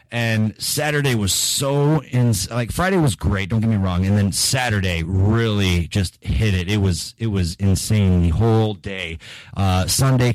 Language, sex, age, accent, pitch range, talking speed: English, male, 30-49, American, 95-120 Hz, 175 wpm